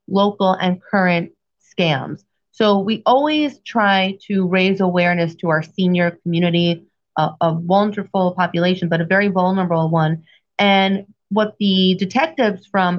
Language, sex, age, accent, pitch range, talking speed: English, female, 30-49, American, 165-200 Hz, 135 wpm